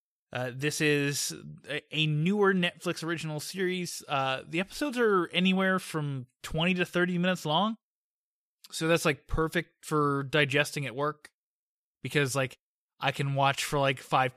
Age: 20-39